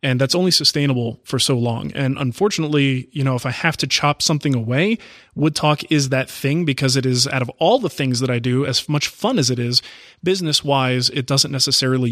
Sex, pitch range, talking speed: male, 130-160 Hz, 220 wpm